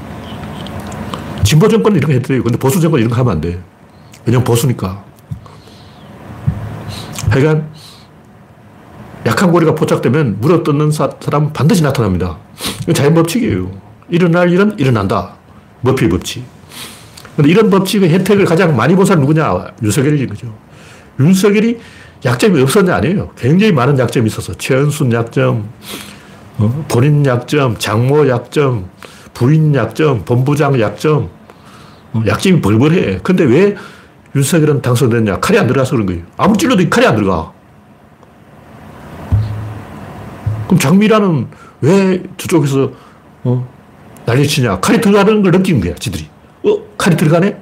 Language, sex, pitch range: Korean, male, 110-175 Hz